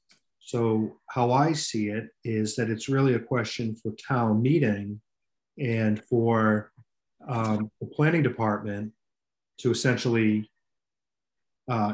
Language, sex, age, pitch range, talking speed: English, male, 40-59, 110-125 Hz, 115 wpm